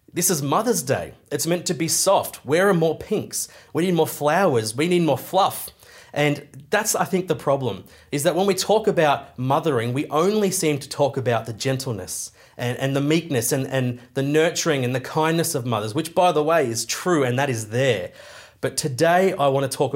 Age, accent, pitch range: 30-49, Australian, 125-165 Hz